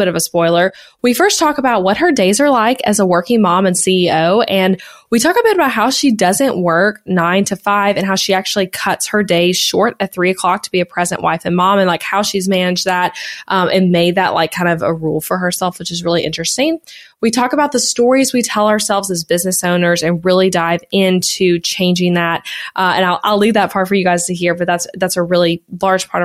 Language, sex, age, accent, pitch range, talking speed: English, female, 20-39, American, 175-220 Hz, 245 wpm